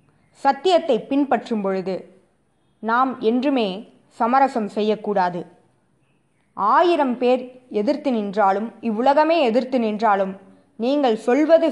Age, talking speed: 20-39, 85 wpm